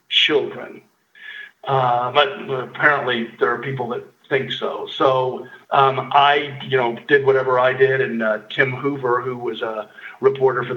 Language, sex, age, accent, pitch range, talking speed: English, male, 50-69, American, 120-150 Hz, 155 wpm